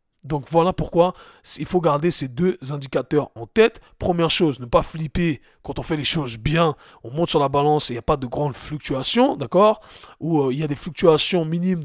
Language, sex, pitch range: French, male, 140-180 Hz